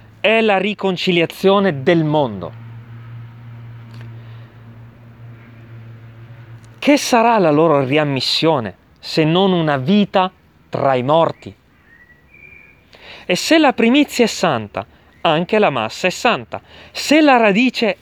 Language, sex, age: Italian, male, 30-49